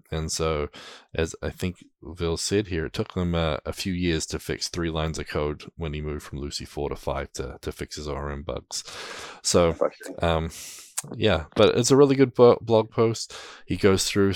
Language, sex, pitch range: English, male, 80-95 Hz